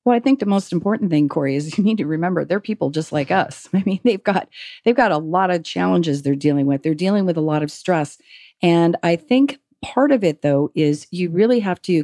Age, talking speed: 40-59, 250 wpm